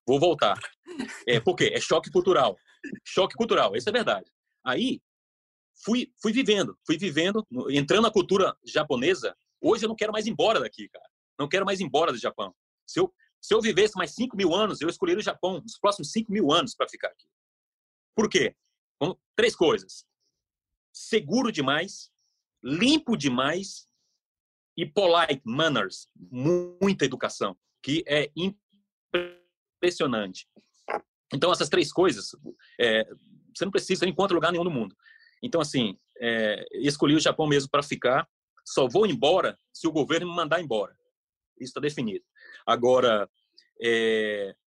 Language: Portuguese